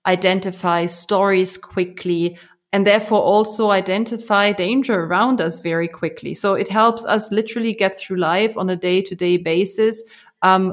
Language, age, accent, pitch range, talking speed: English, 30-49, German, 180-210 Hz, 150 wpm